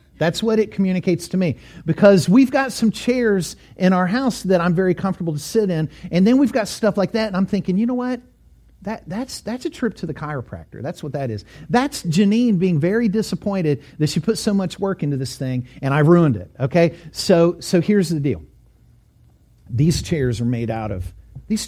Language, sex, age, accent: English, male, 50-69, American